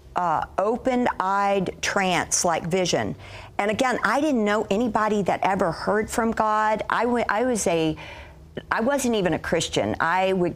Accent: American